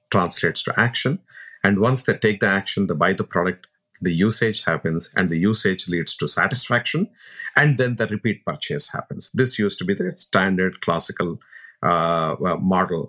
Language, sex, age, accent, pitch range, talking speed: English, male, 50-69, Indian, 95-125 Hz, 170 wpm